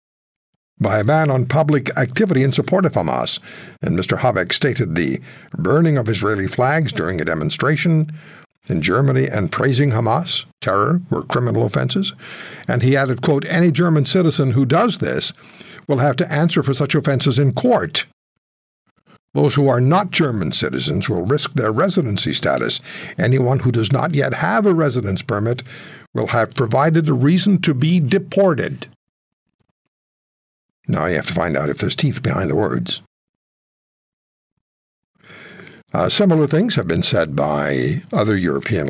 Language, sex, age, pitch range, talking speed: English, male, 60-79, 125-165 Hz, 155 wpm